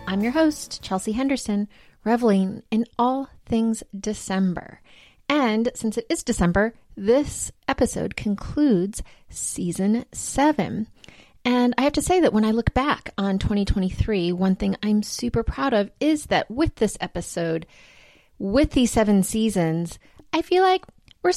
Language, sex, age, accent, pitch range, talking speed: English, female, 30-49, American, 195-255 Hz, 145 wpm